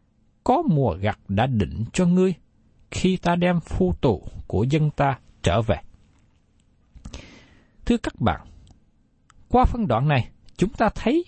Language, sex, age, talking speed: Vietnamese, male, 60-79, 145 wpm